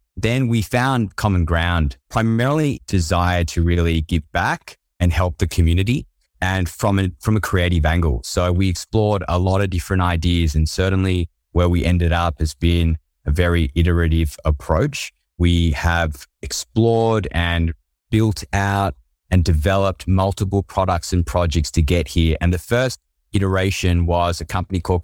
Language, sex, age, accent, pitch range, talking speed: English, male, 20-39, Australian, 85-100 Hz, 155 wpm